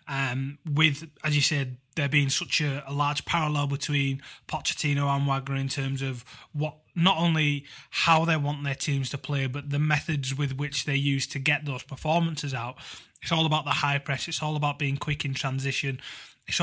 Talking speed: 200 wpm